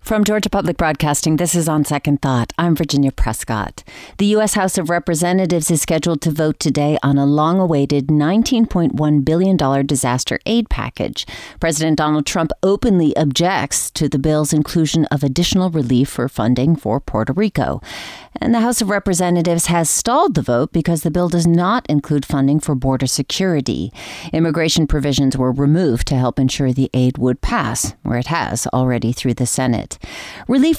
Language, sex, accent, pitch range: English, female, American, 140-180 Hz